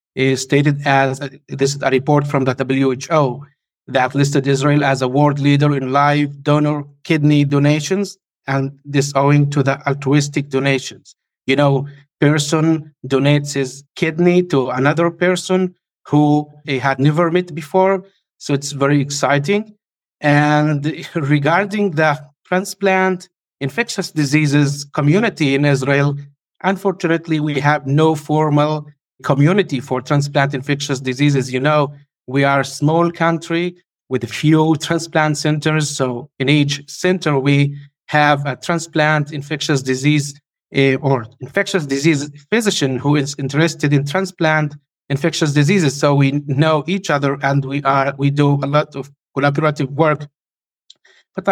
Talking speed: 135 wpm